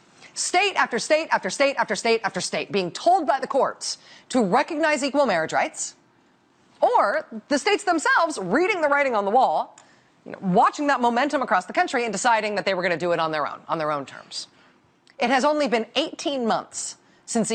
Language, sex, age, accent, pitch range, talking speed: English, female, 40-59, American, 215-315 Hz, 205 wpm